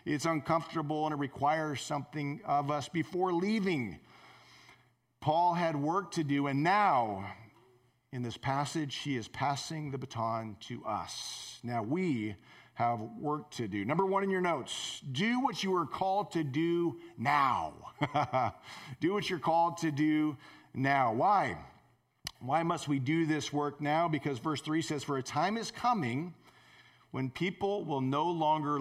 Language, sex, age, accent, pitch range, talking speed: English, male, 40-59, American, 130-170 Hz, 155 wpm